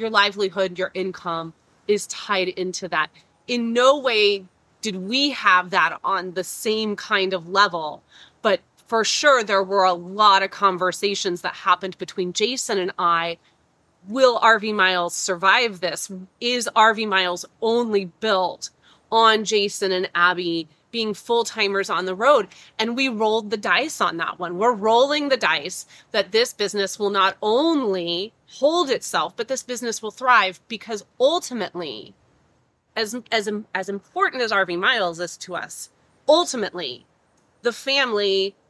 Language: English